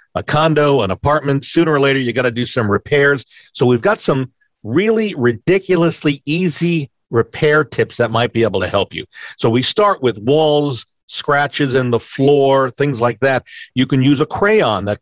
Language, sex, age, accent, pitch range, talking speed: English, male, 50-69, American, 120-155 Hz, 190 wpm